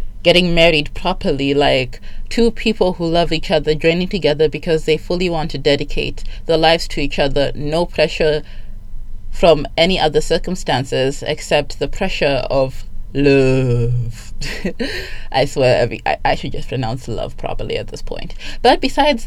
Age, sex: 20-39, female